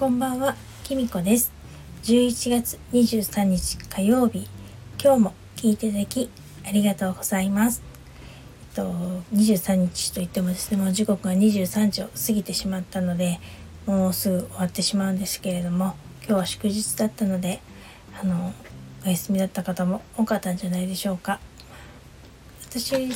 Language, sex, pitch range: Japanese, female, 185-225 Hz